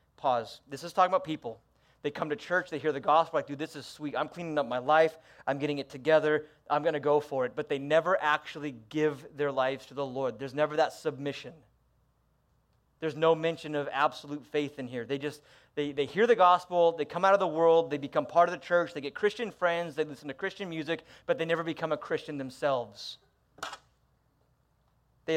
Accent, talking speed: American, 220 wpm